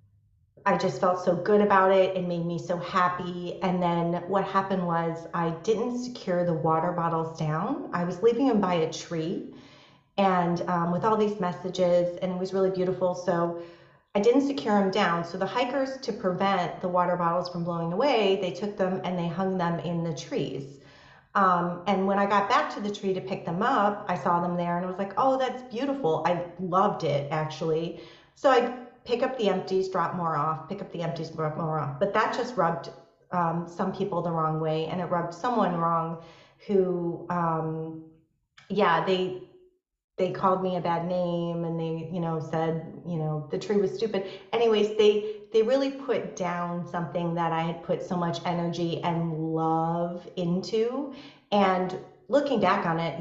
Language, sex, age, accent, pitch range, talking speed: English, female, 30-49, American, 170-195 Hz, 195 wpm